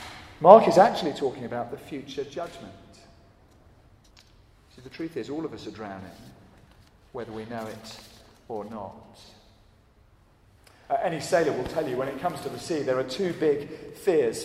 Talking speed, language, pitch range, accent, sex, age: 165 wpm, English, 105-130 Hz, British, male, 40-59